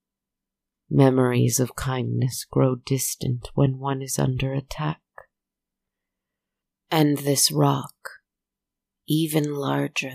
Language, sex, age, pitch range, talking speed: English, female, 30-49, 130-155 Hz, 90 wpm